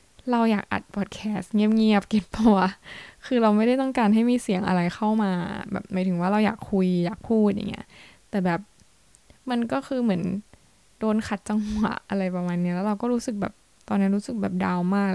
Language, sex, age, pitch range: Thai, female, 10-29, 190-215 Hz